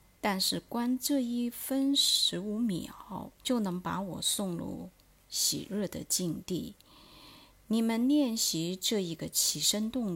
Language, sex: Chinese, female